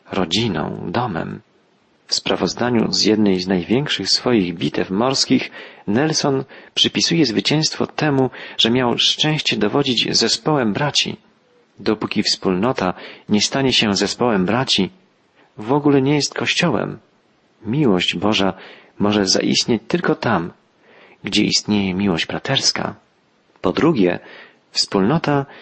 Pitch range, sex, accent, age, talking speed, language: 100-125 Hz, male, native, 40-59, 110 wpm, Polish